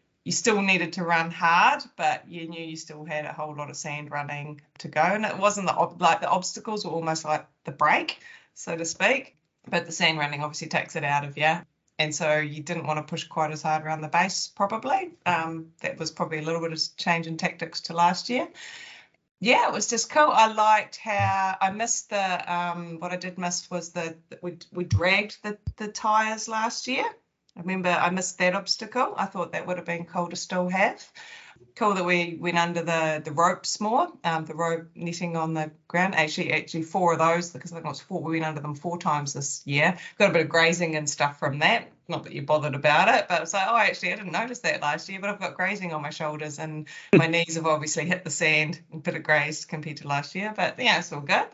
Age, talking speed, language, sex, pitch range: 30-49, 240 wpm, English, female, 155-185 Hz